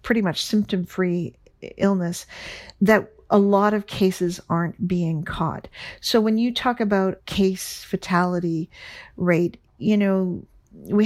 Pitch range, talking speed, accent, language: 175-210 Hz, 125 wpm, American, English